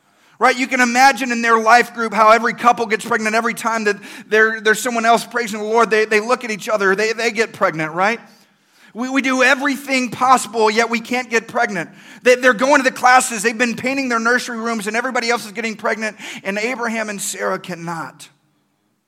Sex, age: male, 40-59